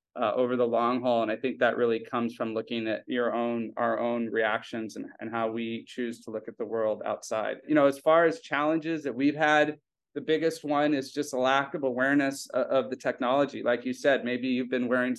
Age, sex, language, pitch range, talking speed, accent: 30-49, male, English, 120-140 Hz, 235 wpm, American